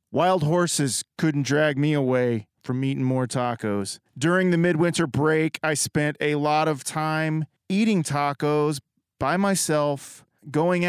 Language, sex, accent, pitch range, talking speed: English, male, American, 135-165 Hz, 140 wpm